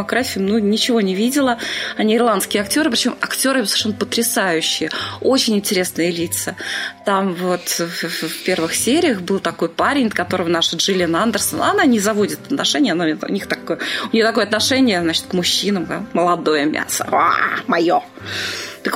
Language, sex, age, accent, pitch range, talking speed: Russian, female, 20-39, native, 185-250 Hz, 150 wpm